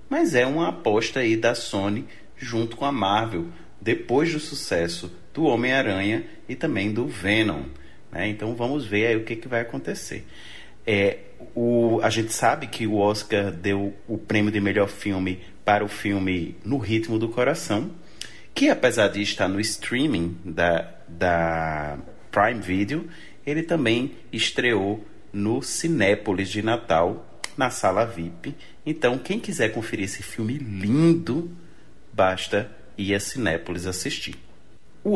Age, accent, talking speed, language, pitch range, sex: 30-49, Brazilian, 140 wpm, Portuguese, 100-135 Hz, male